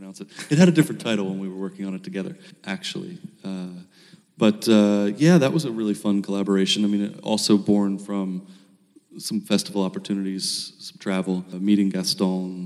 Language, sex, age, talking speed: English, male, 30-49, 175 wpm